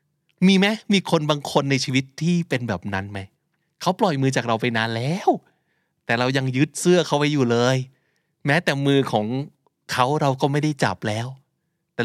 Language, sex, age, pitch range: Thai, male, 20-39, 115-160 Hz